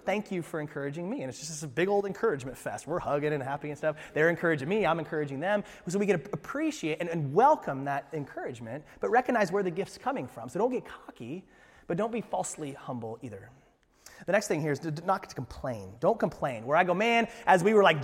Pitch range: 145-205 Hz